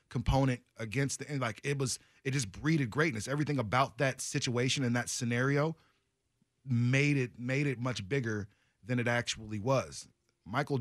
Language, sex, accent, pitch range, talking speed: English, male, American, 110-140 Hz, 160 wpm